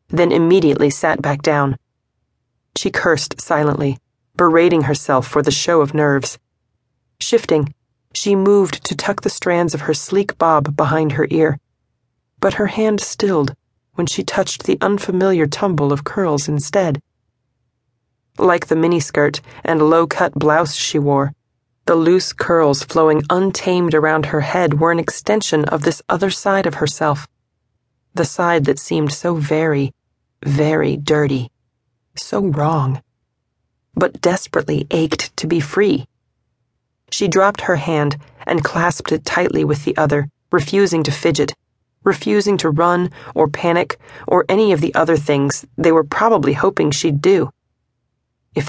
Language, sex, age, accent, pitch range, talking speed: English, female, 30-49, American, 140-175 Hz, 145 wpm